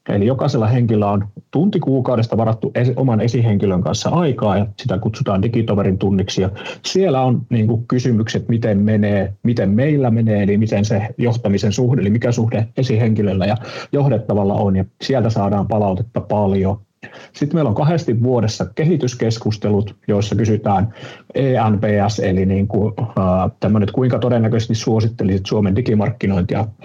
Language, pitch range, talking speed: Finnish, 105-125 Hz, 130 wpm